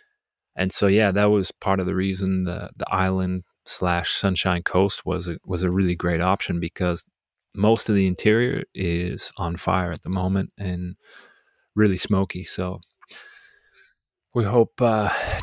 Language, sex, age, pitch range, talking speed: English, male, 30-49, 90-110 Hz, 155 wpm